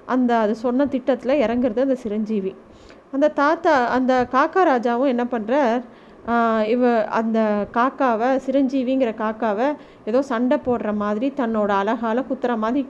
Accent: native